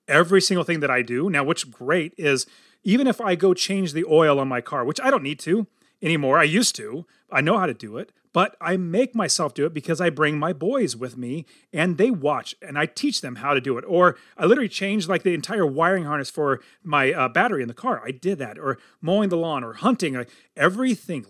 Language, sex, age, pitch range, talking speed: English, male, 30-49, 145-195 Hz, 240 wpm